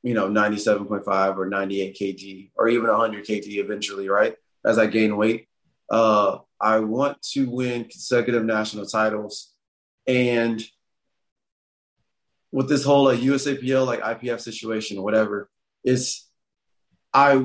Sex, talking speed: male, 125 wpm